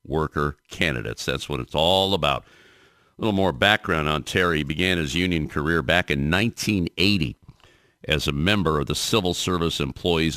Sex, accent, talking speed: male, American, 170 wpm